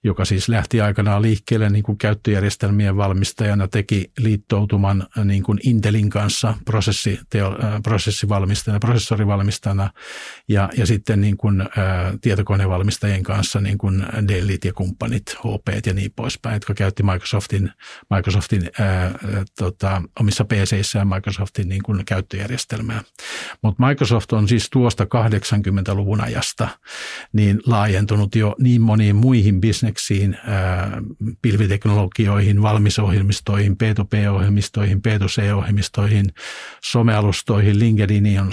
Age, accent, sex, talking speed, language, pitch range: 50-69, native, male, 115 wpm, Finnish, 100-110 Hz